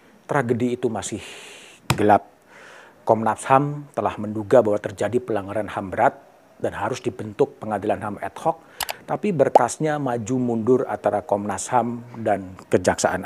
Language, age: Indonesian, 40-59